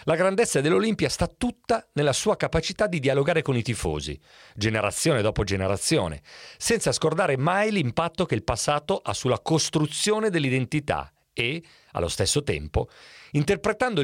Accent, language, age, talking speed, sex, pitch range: native, Italian, 40-59, 135 wpm, male, 110-170 Hz